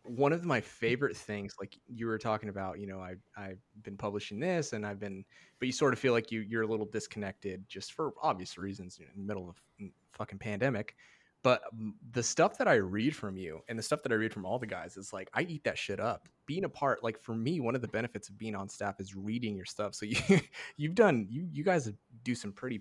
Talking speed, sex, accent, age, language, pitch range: 255 wpm, male, American, 20-39, English, 100-115 Hz